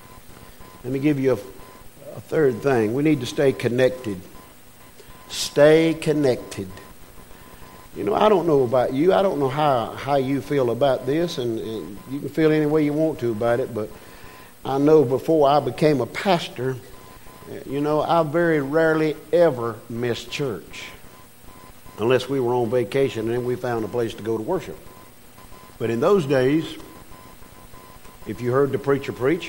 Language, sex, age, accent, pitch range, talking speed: English, male, 50-69, American, 115-155 Hz, 170 wpm